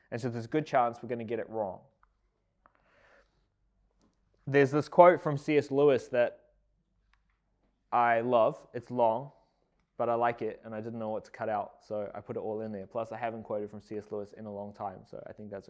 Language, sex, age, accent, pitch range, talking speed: English, male, 20-39, Australian, 115-160 Hz, 220 wpm